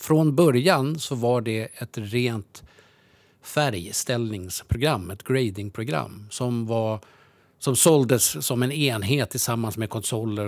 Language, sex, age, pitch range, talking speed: English, male, 50-69, 105-135 Hz, 115 wpm